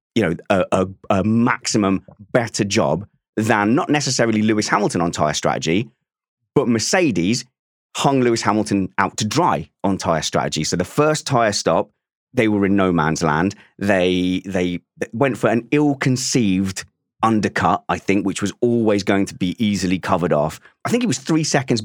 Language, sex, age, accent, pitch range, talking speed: English, male, 30-49, British, 95-120 Hz, 170 wpm